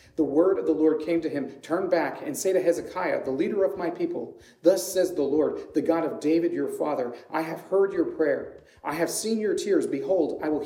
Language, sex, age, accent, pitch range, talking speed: English, male, 40-59, American, 145-245 Hz, 235 wpm